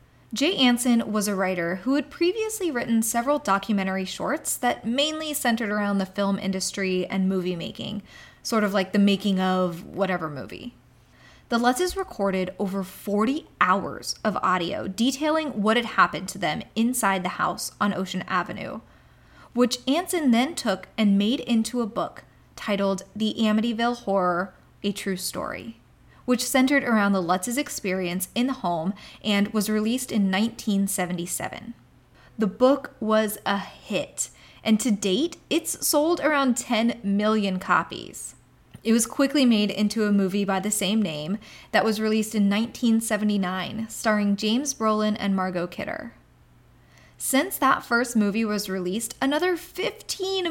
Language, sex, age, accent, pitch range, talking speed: English, female, 20-39, American, 195-245 Hz, 145 wpm